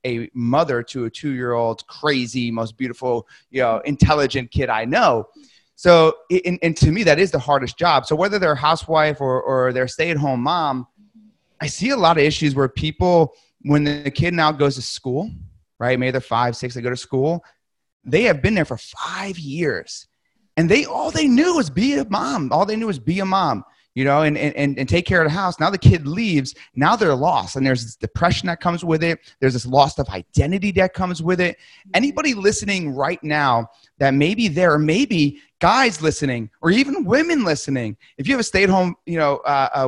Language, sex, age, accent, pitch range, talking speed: English, male, 30-49, American, 130-185 Hz, 210 wpm